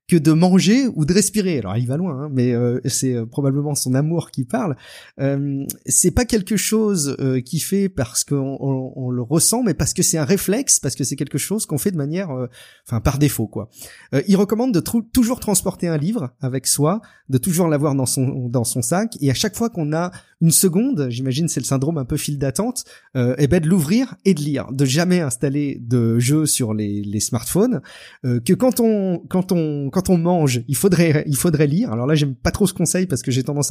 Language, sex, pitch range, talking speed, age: French, male, 125-175 Hz, 235 wpm, 30-49